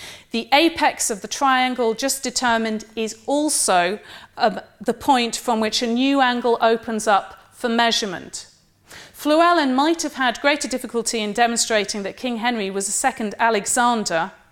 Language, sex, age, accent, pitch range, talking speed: English, female, 40-59, British, 215-260 Hz, 150 wpm